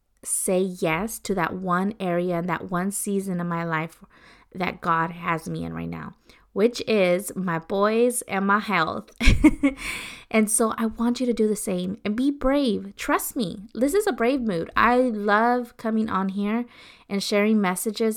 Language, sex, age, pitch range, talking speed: English, female, 20-39, 180-225 Hz, 180 wpm